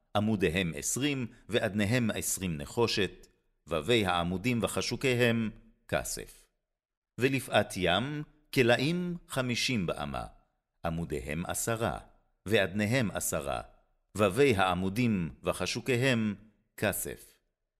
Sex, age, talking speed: male, 50-69, 75 wpm